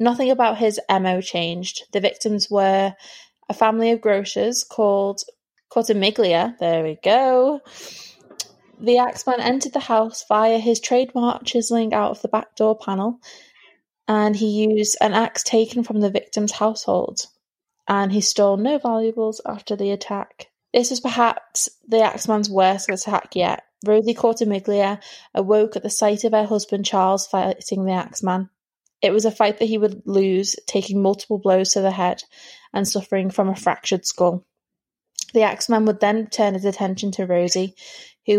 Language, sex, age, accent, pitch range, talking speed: English, female, 20-39, British, 190-225 Hz, 160 wpm